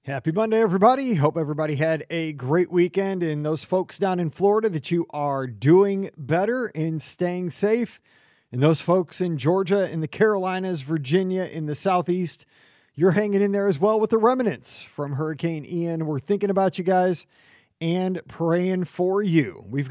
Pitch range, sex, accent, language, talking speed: 155-195 Hz, male, American, English, 170 wpm